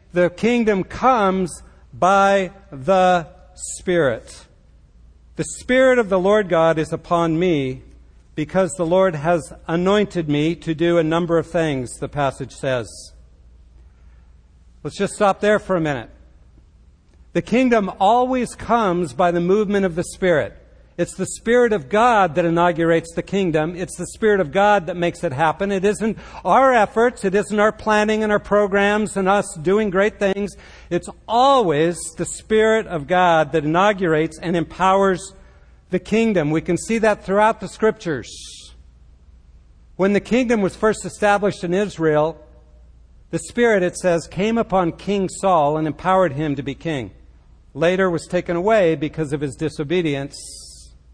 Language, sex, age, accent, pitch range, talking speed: English, male, 60-79, American, 150-200 Hz, 155 wpm